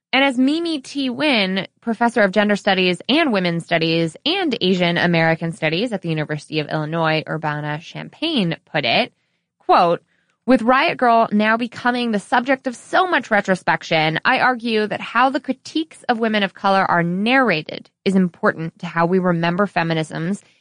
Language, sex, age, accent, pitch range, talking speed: English, female, 20-39, American, 170-255 Hz, 160 wpm